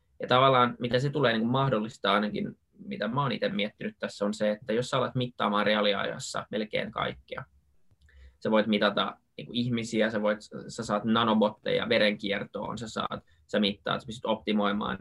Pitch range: 105-120 Hz